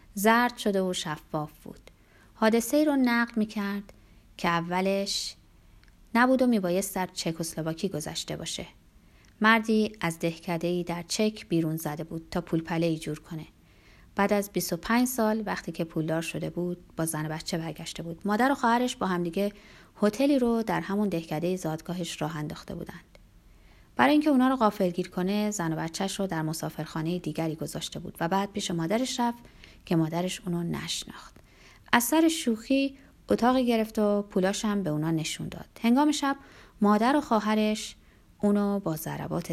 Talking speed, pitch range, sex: 165 wpm, 165-225 Hz, female